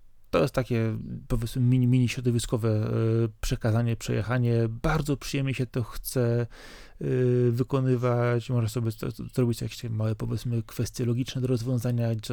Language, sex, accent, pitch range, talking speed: Polish, male, native, 115-130 Hz, 120 wpm